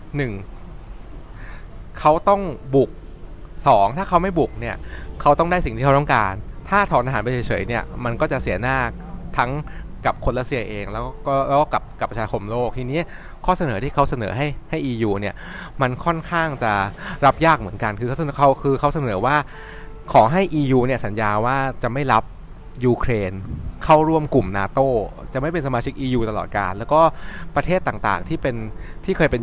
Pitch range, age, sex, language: 105-145 Hz, 20-39, male, Thai